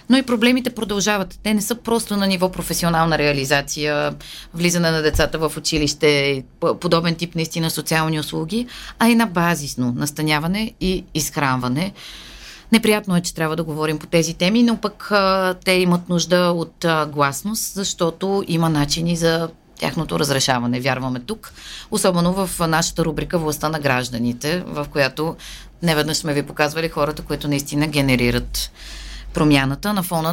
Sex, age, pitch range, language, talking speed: female, 30-49, 150-190 Hz, Bulgarian, 145 wpm